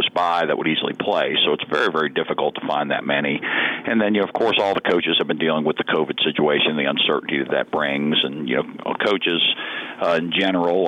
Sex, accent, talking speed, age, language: male, American, 230 wpm, 50-69, English